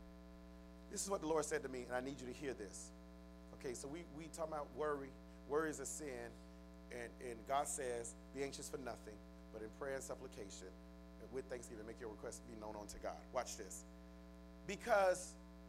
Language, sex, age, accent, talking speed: English, male, 40-59, American, 200 wpm